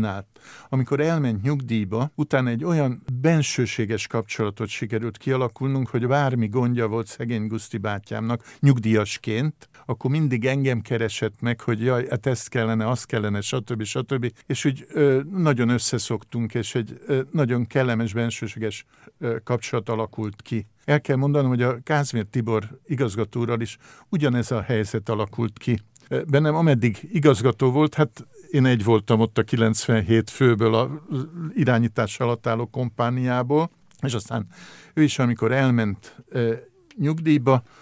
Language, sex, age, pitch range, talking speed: Hungarian, male, 50-69, 110-135 Hz, 140 wpm